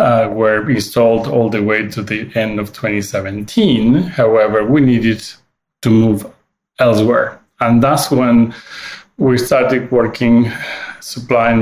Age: 30-49